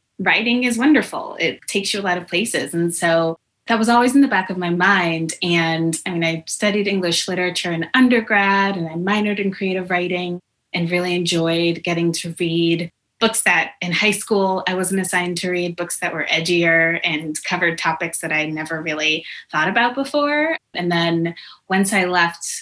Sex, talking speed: female, 190 wpm